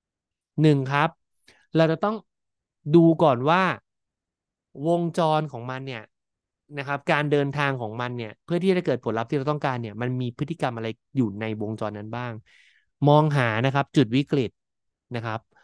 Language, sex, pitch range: Thai, male, 115-155 Hz